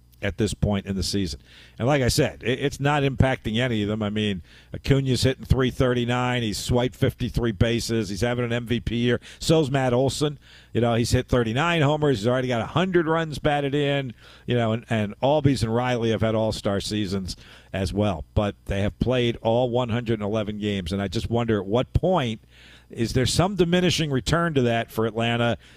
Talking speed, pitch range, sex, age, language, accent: 195 wpm, 110-140 Hz, male, 50-69, English, American